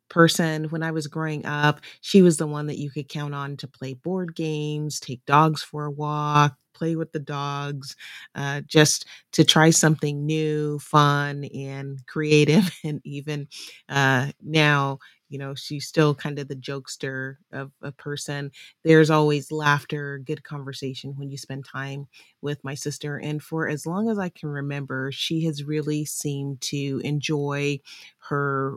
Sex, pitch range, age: female, 140-160 Hz, 30-49